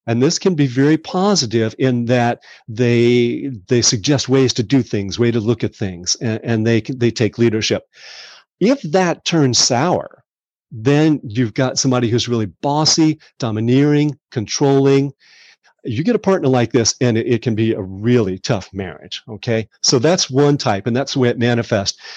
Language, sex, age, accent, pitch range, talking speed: English, male, 40-59, American, 115-140 Hz, 175 wpm